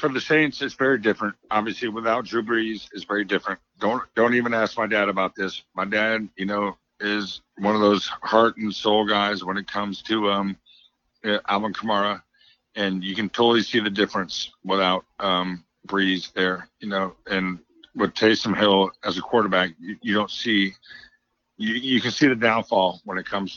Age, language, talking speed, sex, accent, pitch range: 50-69, English, 185 wpm, male, American, 95-110 Hz